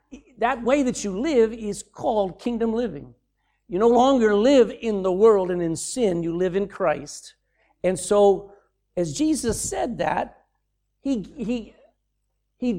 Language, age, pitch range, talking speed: English, 50-69, 190-265 Hz, 150 wpm